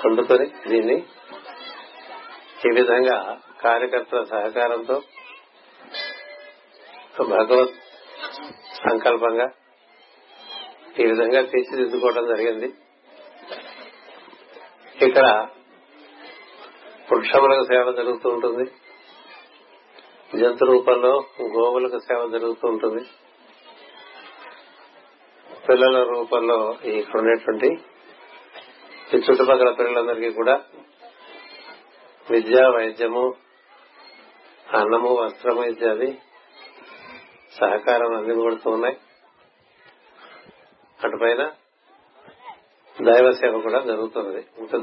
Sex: male